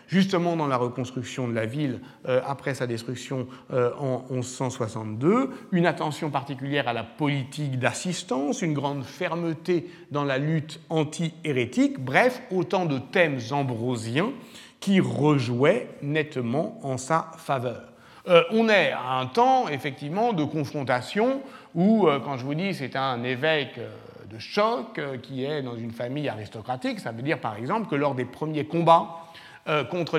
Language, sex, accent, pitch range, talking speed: French, male, French, 125-170 Hz, 155 wpm